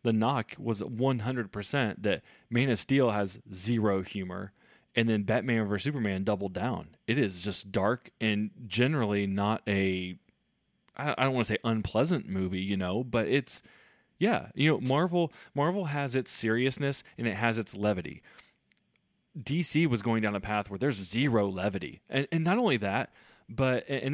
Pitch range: 100-130 Hz